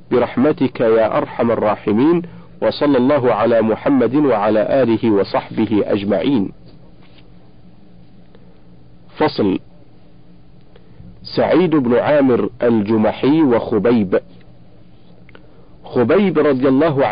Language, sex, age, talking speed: Arabic, male, 50-69, 75 wpm